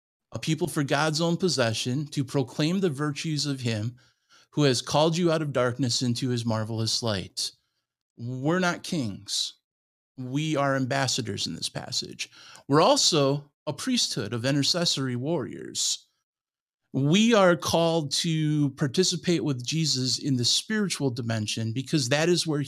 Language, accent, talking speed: English, American, 145 wpm